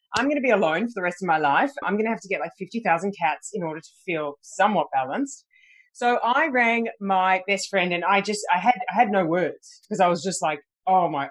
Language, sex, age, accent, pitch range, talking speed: English, female, 30-49, Australian, 170-245 Hz, 255 wpm